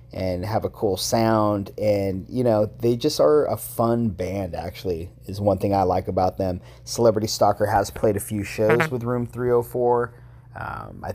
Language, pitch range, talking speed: English, 100-120 Hz, 185 wpm